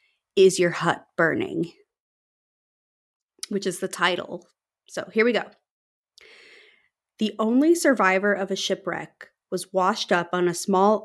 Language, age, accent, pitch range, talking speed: English, 30-49, American, 175-220 Hz, 130 wpm